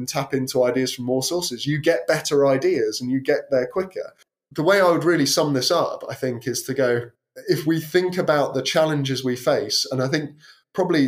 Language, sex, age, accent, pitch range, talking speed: English, male, 20-39, British, 125-150 Hz, 220 wpm